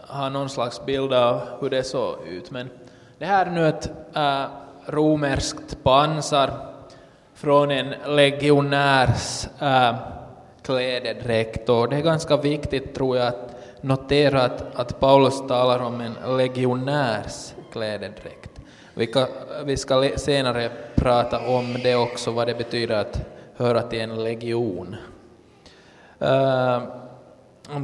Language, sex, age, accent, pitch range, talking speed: Swedish, male, 20-39, Finnish, 125-145 Hz, 130 wpm